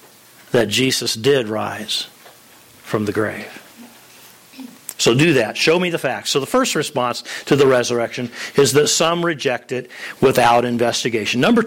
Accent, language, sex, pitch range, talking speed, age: American, English, male, 125-195 Hz, 150 wpm, 60-79